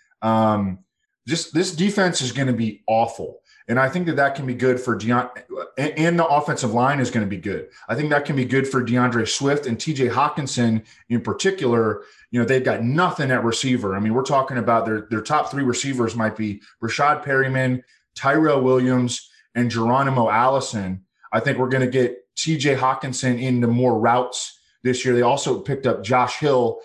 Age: 20-39